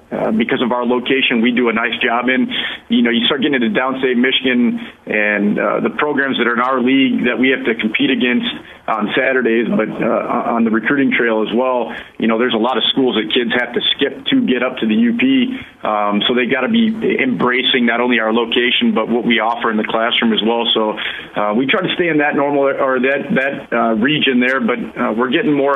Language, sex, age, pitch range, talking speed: English, male, 40-59, 115-135 Hz, 240 wpm